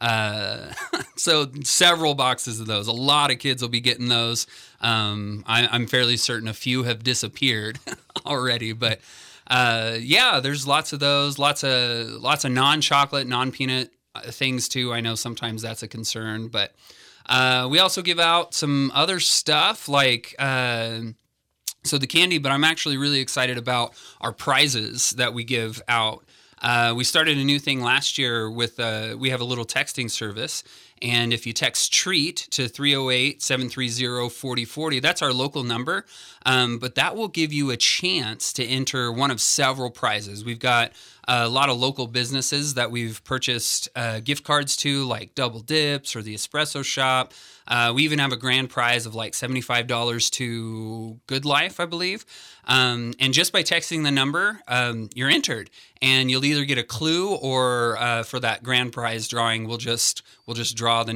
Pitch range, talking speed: 115-140 Hz, 175 wpm